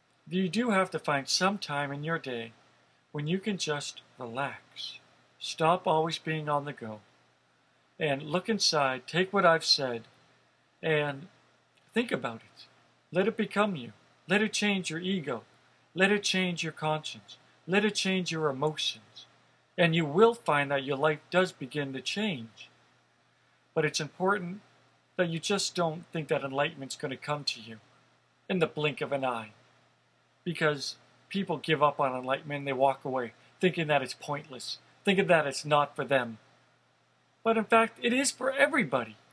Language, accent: English, American